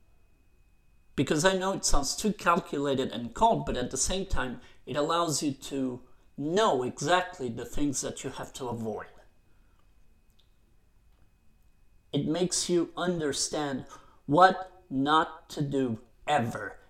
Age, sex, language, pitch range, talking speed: 40-59, male, English, 95-145 Hz, 130 wpm